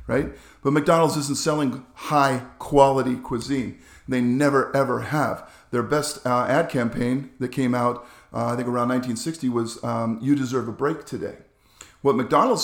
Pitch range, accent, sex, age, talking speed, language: 120-145 Hz, American, male, 50-69, 155 wpm, English